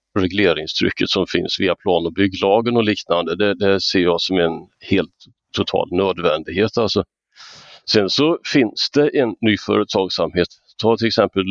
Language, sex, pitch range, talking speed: Swedish, male, 95-115 Hz, 150 wpm